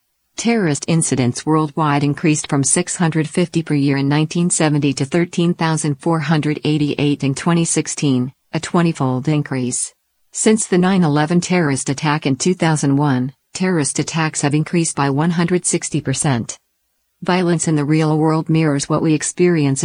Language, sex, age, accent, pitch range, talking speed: English, female, 50-69, American, 145-165 Hz, 120 wpm